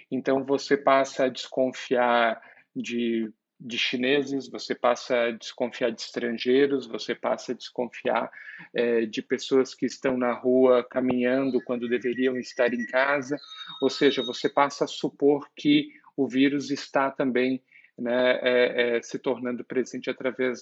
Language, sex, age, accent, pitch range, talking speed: Portuguese, male, 50-69, Brazilian, 125-145 Hz, 145 wpm